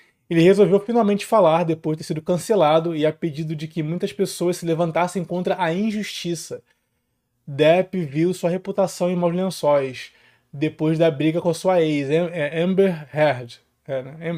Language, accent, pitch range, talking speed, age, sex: Portuguese, Brazilian, 145-180 Hz, 155 wpm, 20-39, male